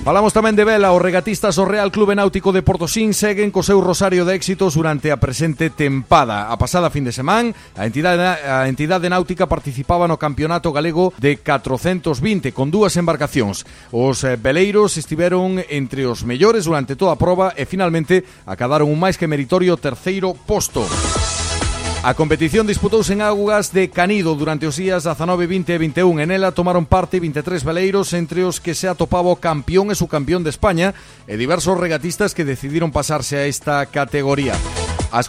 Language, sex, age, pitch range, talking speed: Spanish, male, 40-59, 145-190 Hz, 170 wpm